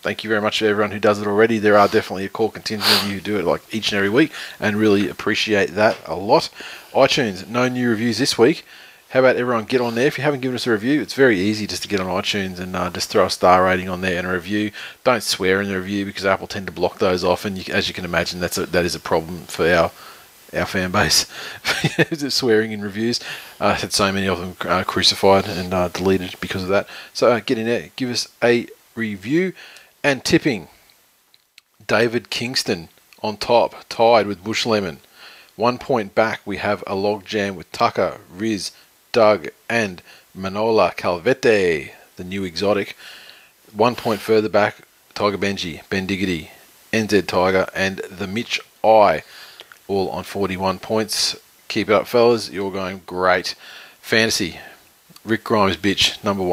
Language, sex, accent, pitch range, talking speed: English, male, Australian, 95-110 Hz, 195 wpm